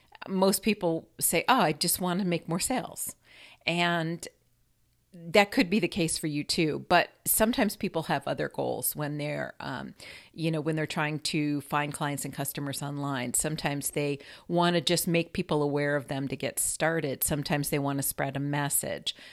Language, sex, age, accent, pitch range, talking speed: English, female, 50-69, American, 145-185 Hz, 185 wpm